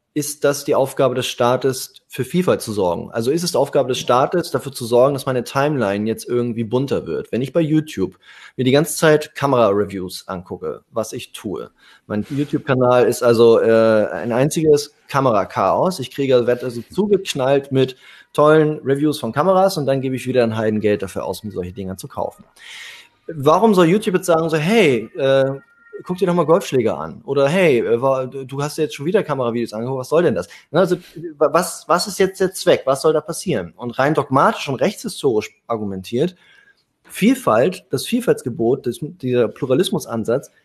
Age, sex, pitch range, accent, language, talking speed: 20-39, male, 120-160 Hz, German, German, 175 wpm